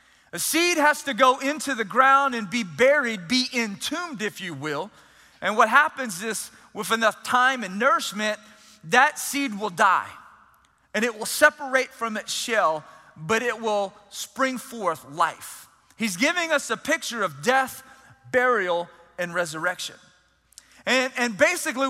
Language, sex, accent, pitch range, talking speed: English, male, American, 215-275 Hz, 150 wpm